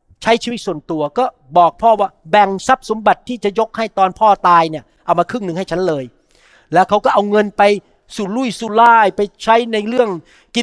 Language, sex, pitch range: Thai, male, 190-235 Hz